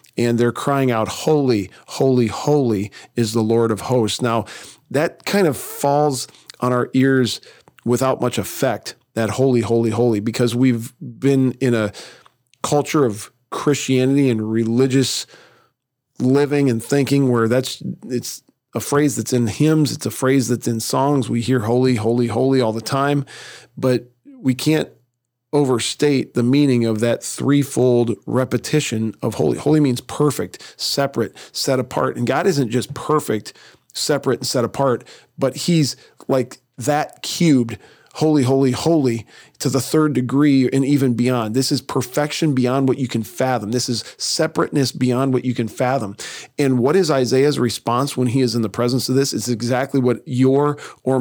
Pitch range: 120-140 Hz